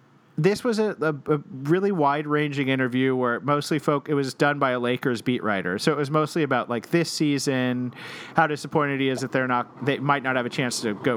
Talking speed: 230 wpm